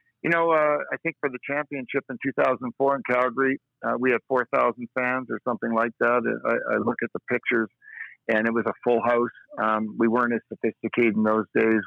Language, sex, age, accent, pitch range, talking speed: English, male, 50-69, American, 115-140 Hz, 205 wpm